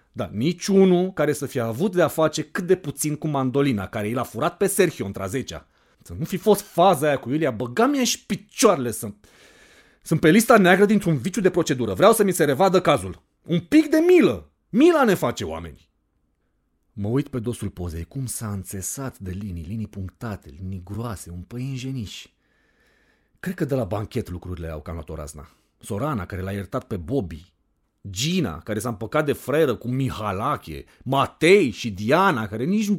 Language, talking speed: Romanian, 185 wpm